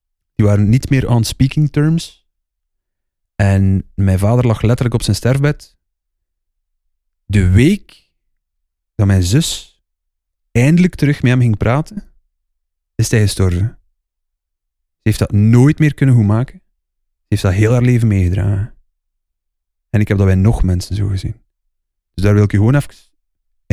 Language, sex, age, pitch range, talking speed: Dutch, male, 30-49, 80-125 Hz, 150 wpm